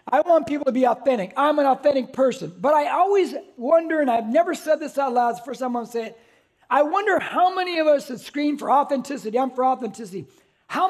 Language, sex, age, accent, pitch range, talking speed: English, male, 40-59, American, 250-310 Hz, 240 wpm